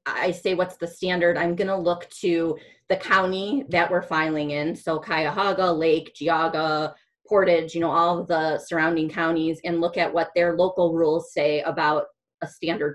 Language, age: English, 30-49